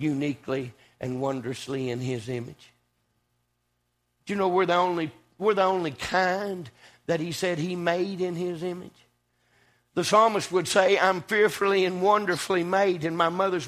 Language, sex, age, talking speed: English, male, 60-79, 160 wpm